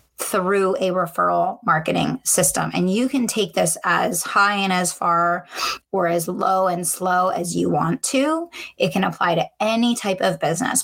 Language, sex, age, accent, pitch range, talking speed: English, female, 20-39, American, 175-205 Hz, 175 wpm